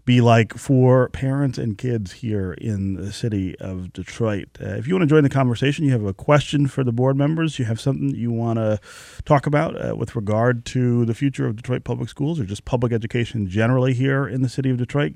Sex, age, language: male, 30-49, English